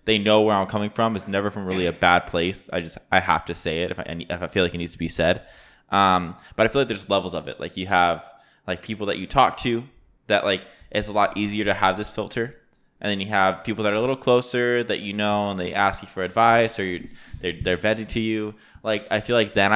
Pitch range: 90-105 Hz